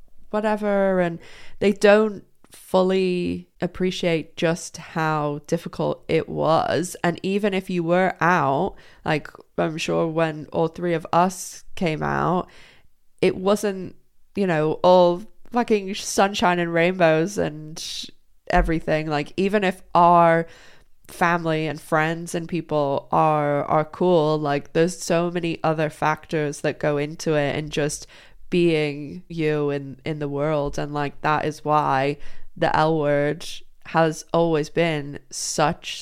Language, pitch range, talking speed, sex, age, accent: English, 150-175 Hz, 135 wpm, female, 20-39, British